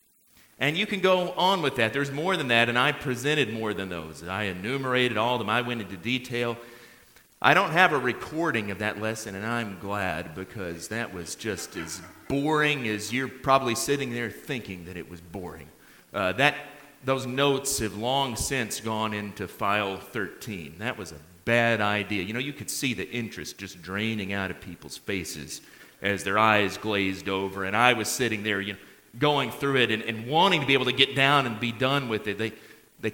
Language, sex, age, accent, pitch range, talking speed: English, male, 40-59, American, 100-135 Hz, 205 wpm